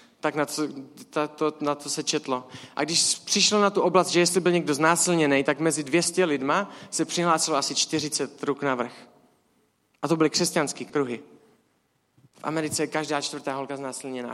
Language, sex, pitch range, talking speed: Czech, male, 155-190 Hz, 175 wpm